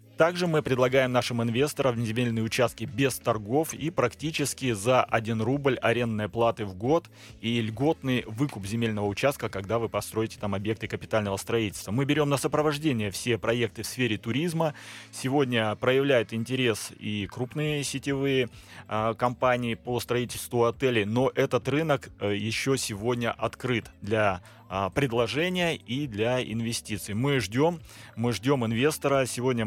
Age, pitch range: 30-49, 110-140 Hz